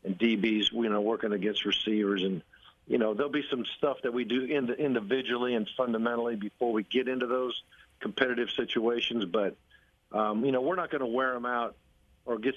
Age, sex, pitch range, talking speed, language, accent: 50-69, male, 105-130 Hz, 190 wpm, English, American